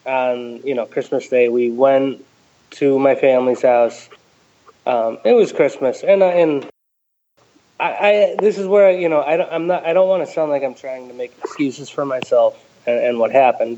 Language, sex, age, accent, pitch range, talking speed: English, male, 20-39, American, 125-170 Hz, 185 wpm